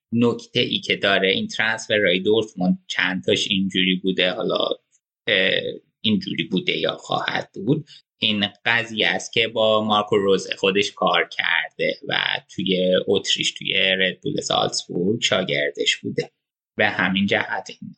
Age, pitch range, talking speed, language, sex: 20-39, 105-140 Hz, 130 wpm, Persian, male